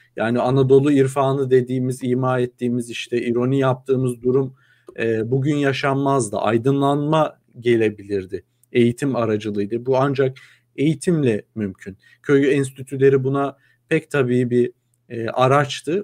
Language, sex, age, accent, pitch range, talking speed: Turkish, male, 50-69, native, 120-140 Hz, 110 wpm